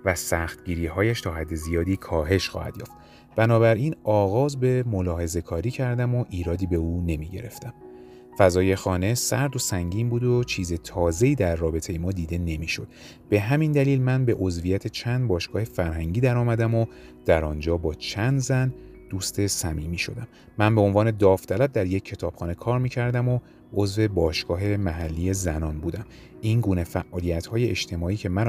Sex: male